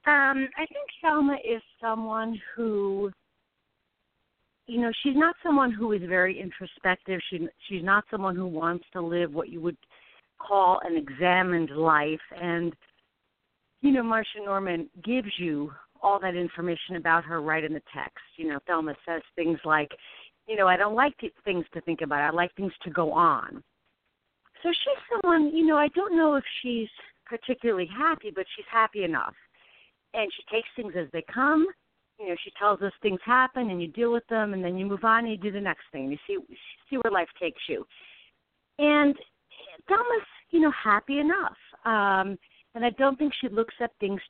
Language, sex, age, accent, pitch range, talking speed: English, female, 50-69, American, 175-255 Hz, 185 wpm